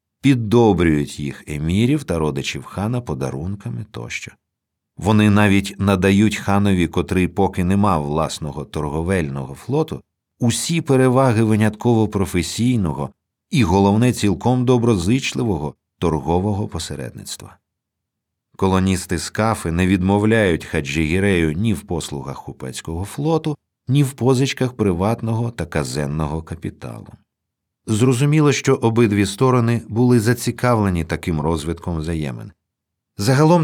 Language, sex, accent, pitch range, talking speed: Ukrainian, male, native, 85-115 Hz, 95 wpm